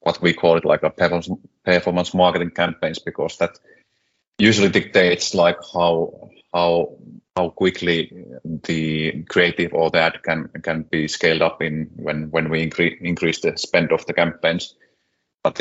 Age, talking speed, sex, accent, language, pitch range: 30-49, 145 wpm, male, Finnish, English, 80-90 Hz